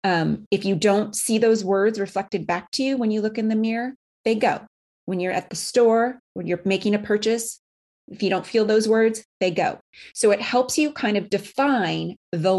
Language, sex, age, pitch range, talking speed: English, female, 30-49, 170-215 Hz, 215 wpm